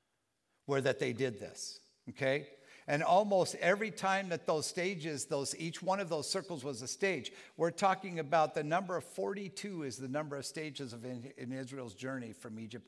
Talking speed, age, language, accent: 190 wpm, 50-69, English, American